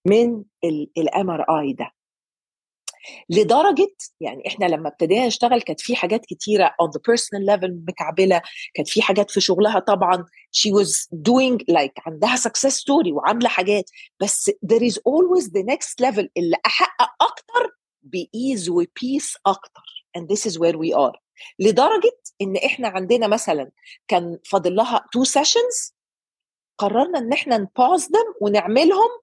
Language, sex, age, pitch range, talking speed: Arabic, female, 40-59, 195-280 Hz, 140 wpm